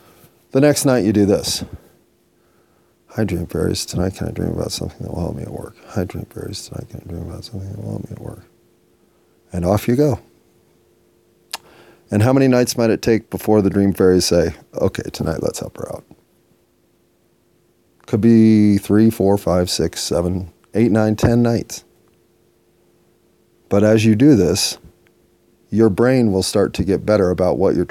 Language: English